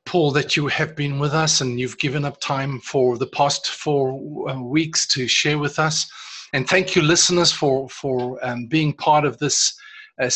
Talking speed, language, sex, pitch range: 190 wpm, English, male, 135-170 Hz